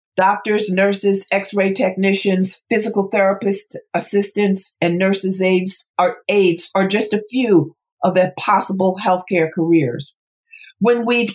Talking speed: 115 wpm